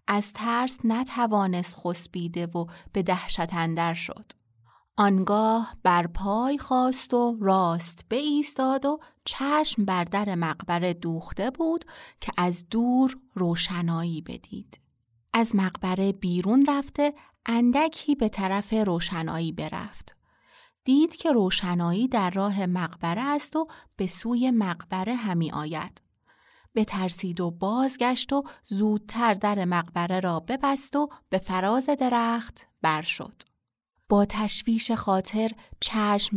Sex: female